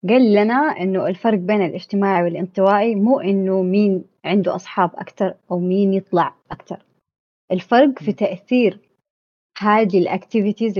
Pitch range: 175-205 Hz